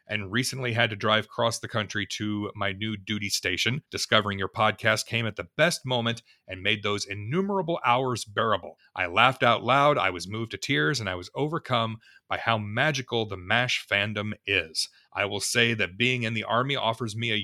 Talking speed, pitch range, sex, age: 200 wpm, 105-135 Hz, male, 40-59